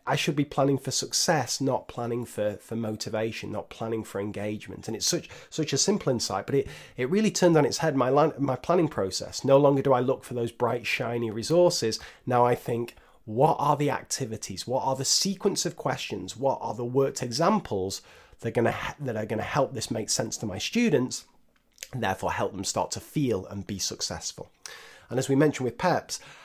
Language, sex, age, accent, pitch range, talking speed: English, male, 30-49, British, 105-135 Hz, 205 wpm